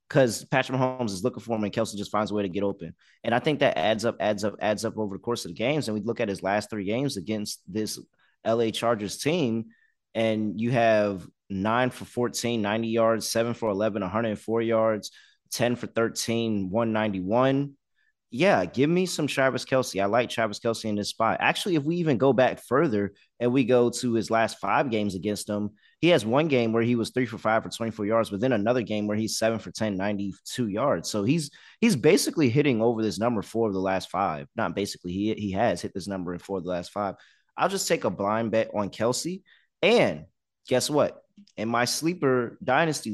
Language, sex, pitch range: English, male, 105-130 Hz